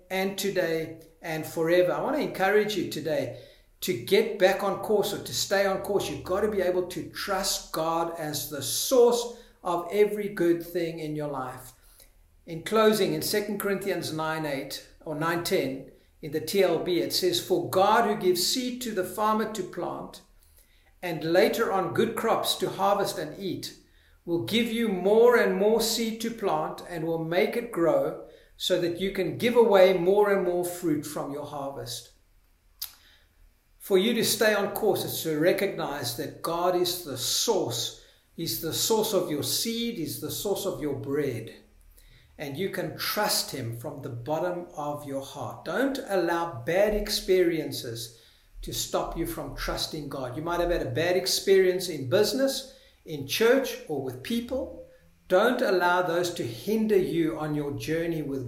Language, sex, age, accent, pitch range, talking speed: English, male, 60-79, South African, 145-195 Hz, 170 wpm